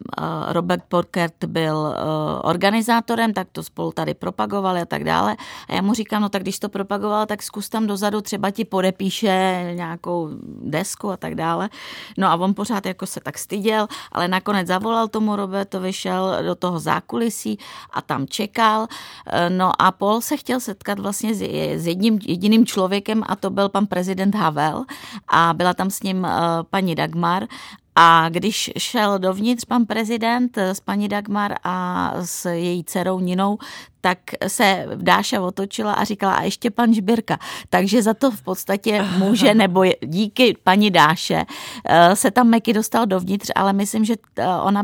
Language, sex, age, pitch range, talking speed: Czech, female, 30-49, 180-210 Hz, 160 wpm